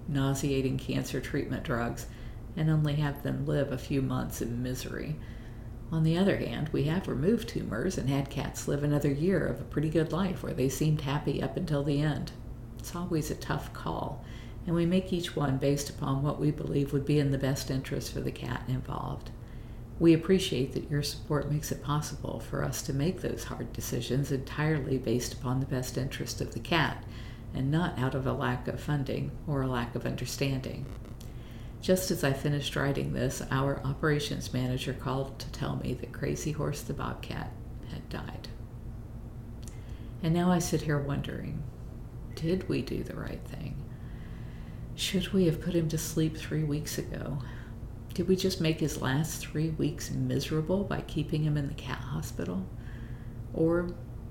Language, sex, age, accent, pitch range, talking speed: English, female, 50-69, American, 120-150 Hz, 180 wpm